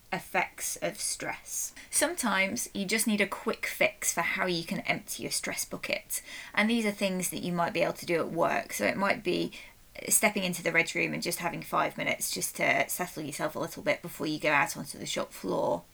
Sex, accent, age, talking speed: female, British, 20-39, 225 wpm